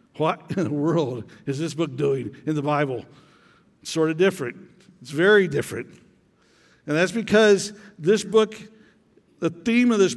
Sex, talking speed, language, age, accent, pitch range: male, 155 wpm, English, 60-79, American, 175-210 Hz